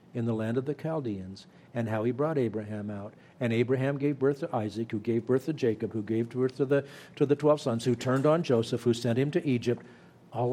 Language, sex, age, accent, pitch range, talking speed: English, male, 50-69, American, 115-150 Hz, 240 wpm